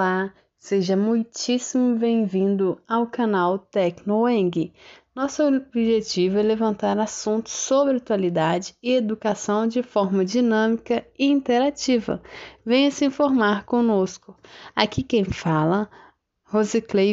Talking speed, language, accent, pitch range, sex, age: 100 wpm, Portuguese, Brazilian, 200-255 Hz, female, 20-39